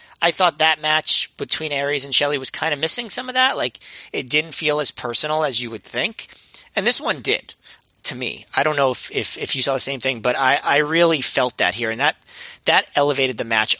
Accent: American